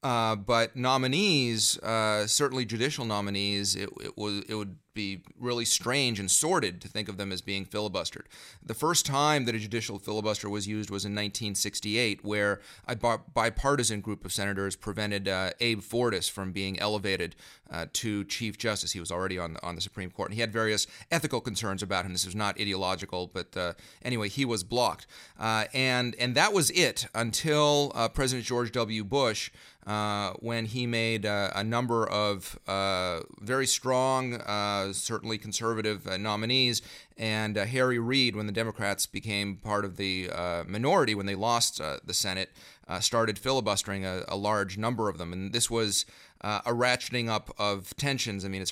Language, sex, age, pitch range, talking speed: English, male, 30-49, 100-120 Hz, 185 wpm